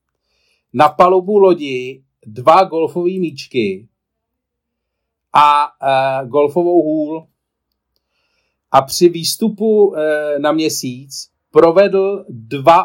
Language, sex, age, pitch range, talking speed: Czech, male, 50-69, 125-165 Hz, 75 wpm